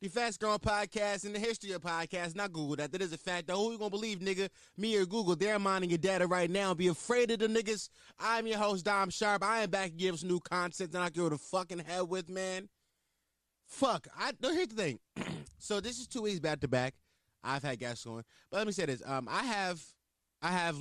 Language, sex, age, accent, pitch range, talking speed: English, male, 20-39, American, 120-185 Hz, 250 wpm